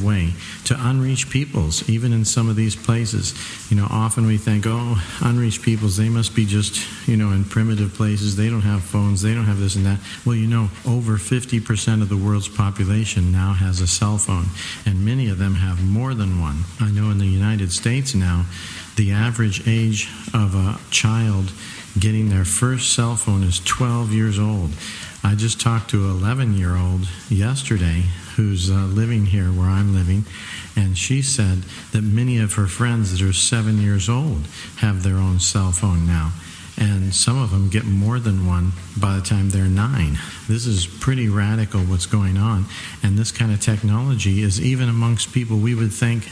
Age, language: 50-69, English